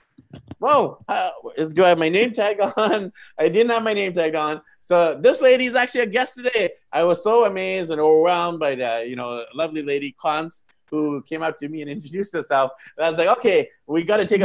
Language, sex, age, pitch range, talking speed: English, male, 30-49, 135-190 Hz, 215 wpm